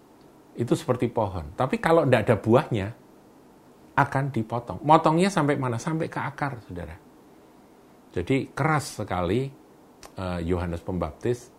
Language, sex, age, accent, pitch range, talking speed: Indonesian, male, 50-69, native, 85-120 Hz, 120 wpm